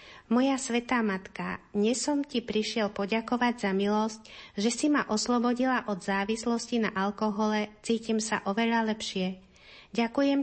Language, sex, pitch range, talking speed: Slovak, female, 205-235 Hz, 130 wpm